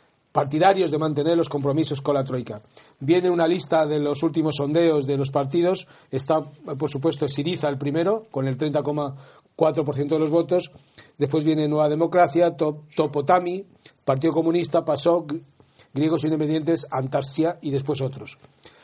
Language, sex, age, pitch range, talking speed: Spanish, male, 40-59, 145-175 Hz, 140 wpm